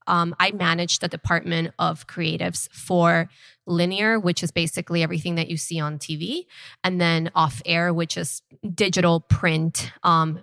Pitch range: 165-190 Hz